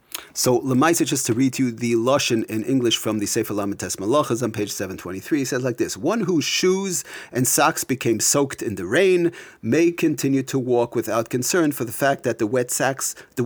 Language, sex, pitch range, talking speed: English, male, 120-160 Hz, 200 wpm